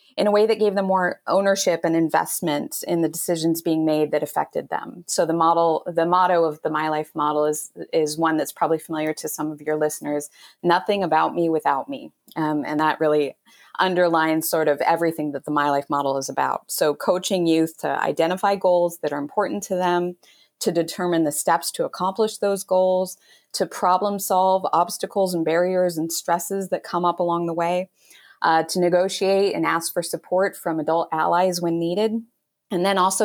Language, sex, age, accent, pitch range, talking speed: English, female, 30-49, American, 155-185 Hz, 195 wpm